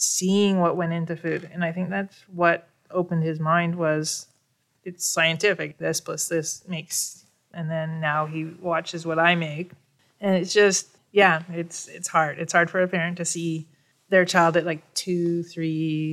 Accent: American